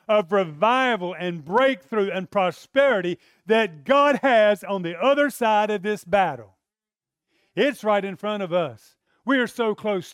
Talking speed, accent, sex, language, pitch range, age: 155 wpm, American, male, English, 170-230 Hz, 40-59